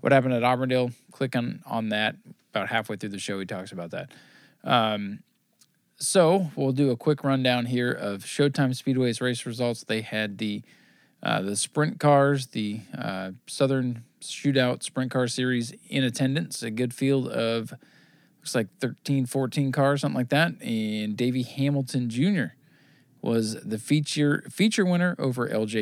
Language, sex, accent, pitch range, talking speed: English, male, American, 115-145 Hz, 160 wpm